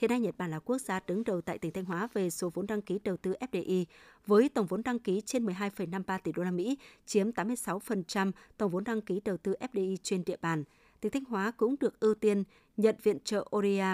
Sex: female